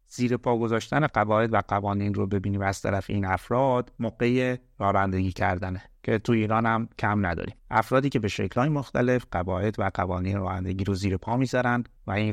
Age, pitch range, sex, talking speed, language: 30-49, 100-125 Hz, male, 180 wpm, Persian